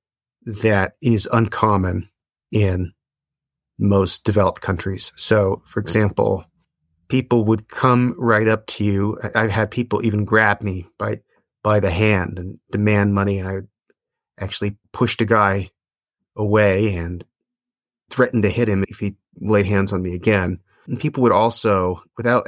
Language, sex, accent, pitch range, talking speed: English, male, American, 95-115 Hz, 145 wpm